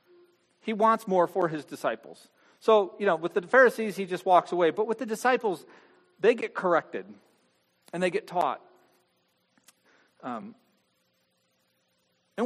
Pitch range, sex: 190-230 Hz, male